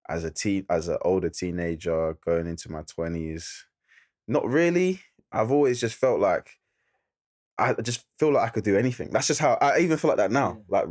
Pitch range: 95-140 Hz